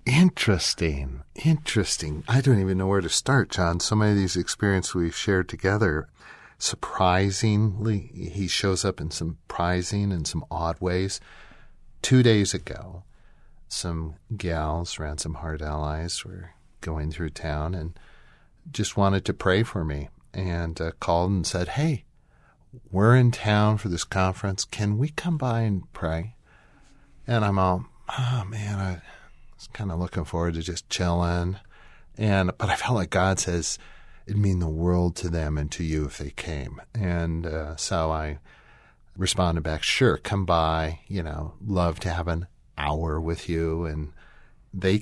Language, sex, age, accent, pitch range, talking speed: English, male, 50-69, American, 80-105 Hz, 160 wpm